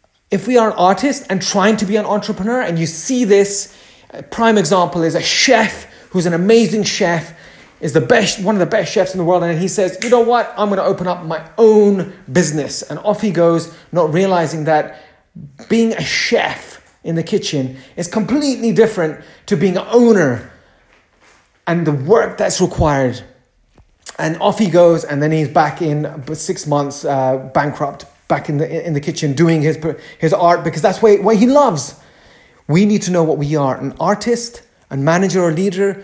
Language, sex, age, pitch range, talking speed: English, male, 30-49, 150-205 Hz, 190 wpm